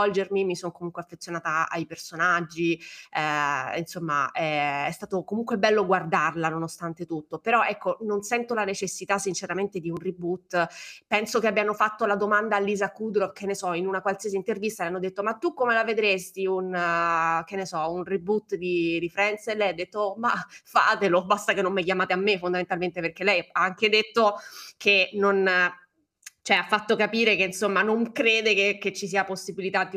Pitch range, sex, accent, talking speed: 175-205 Hz, female, native, 190 wpm